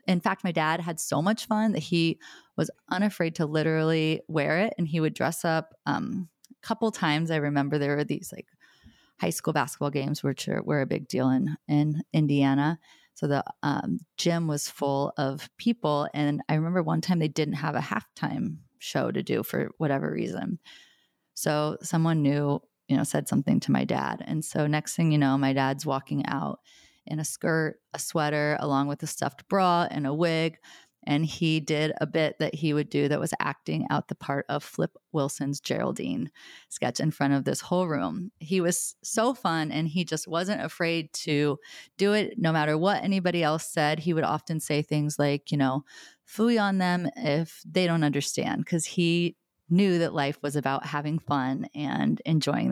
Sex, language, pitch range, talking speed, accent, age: female, English, 145-175 Hz, 195 wpm, American, 30-49